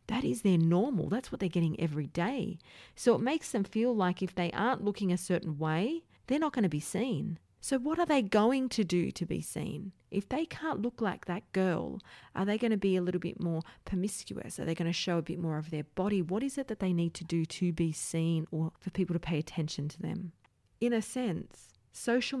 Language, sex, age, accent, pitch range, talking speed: English, female, 40-59, Australian, 160-195 Hz, 240 wpm